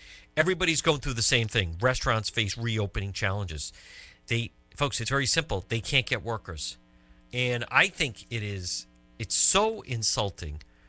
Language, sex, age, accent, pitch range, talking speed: English, male, 50-69, American, 90-135 Hz, 150 wpm